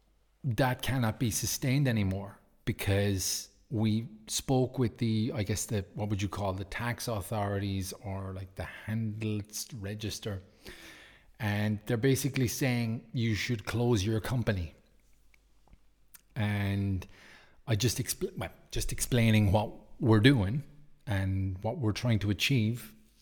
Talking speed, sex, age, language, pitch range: 125 wpm, male, 30-49, English, 100-120 Hz